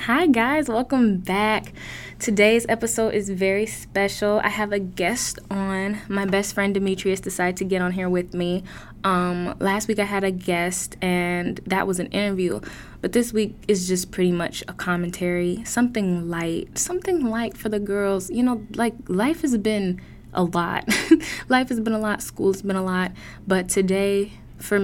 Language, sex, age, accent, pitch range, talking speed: English, female, 10-29, American, 175-205 Hz, 175 wpm